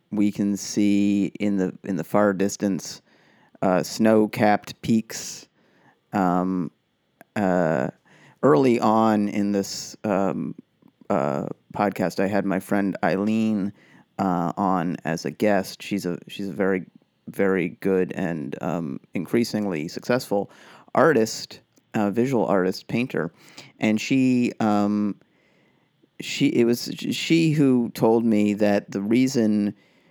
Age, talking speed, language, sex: 30-49, 120 wpm, English, male